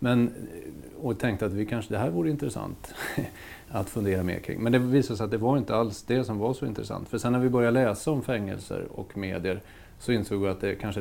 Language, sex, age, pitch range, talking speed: Swedish, male, 30-49, 95-115 Hz, 240 wpm